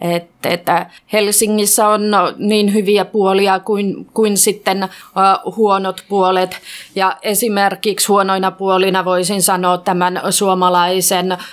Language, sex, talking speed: Finnish, female, 95 wpm